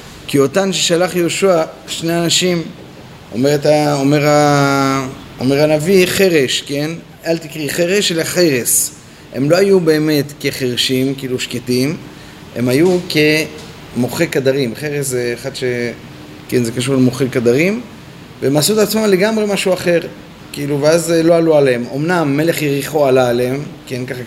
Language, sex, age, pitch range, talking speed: Hebrew, male, 30-49, 120-150 Hz, 140 wpm